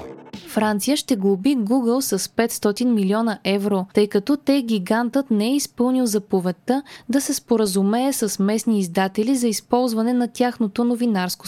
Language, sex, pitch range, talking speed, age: Bulgarian, female, 195-250 Hz, 140 wpm, 20-39